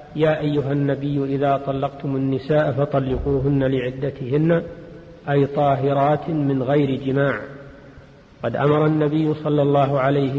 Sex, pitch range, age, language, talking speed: male, 135-150 Hz, 50-69, Arabic, 110 wpm